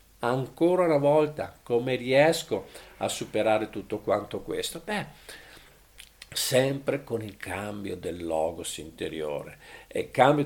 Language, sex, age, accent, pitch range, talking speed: Italian, male, 50-69, native, 120-175 Hz, 120 wpm